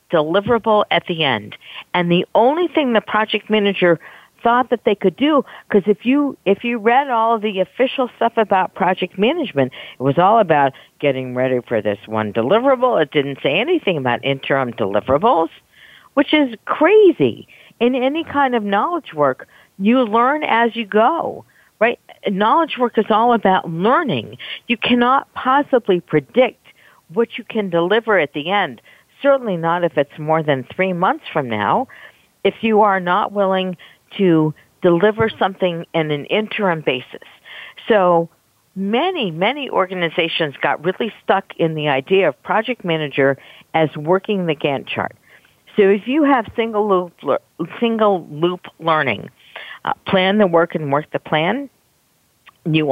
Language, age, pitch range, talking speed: English, 50-69, 160-230 Hz, 155 wpm